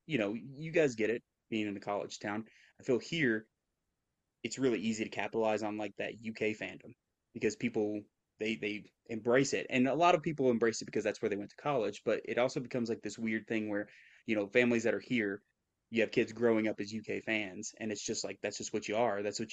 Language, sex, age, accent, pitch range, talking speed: English, male, 20-39, American, 105-115 Hz, 240 wpm